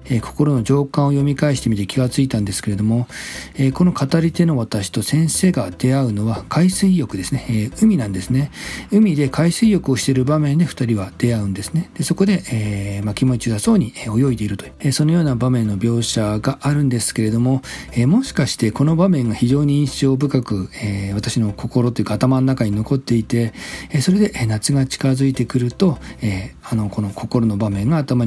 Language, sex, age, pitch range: Japanese, male, 40-59, 110-145 Hz